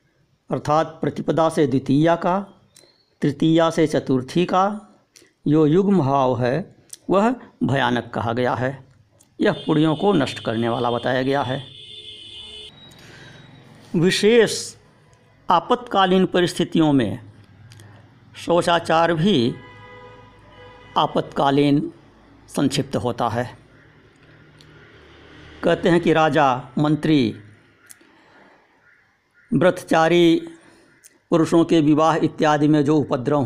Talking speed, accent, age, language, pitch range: 90 wpm, native, 60-79, Hindi, 125-165 Hz